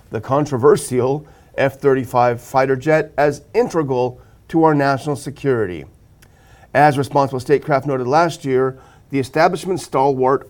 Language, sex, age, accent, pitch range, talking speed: English, male, 40-59, American, 130-160 Hz, 115 wpm